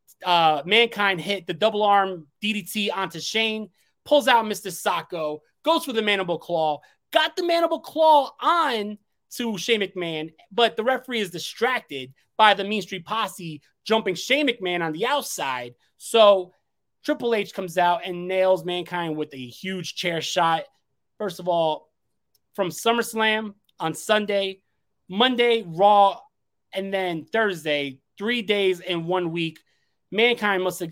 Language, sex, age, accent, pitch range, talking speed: English, male, 30-49, American, 155-215 Hz, 145 wpm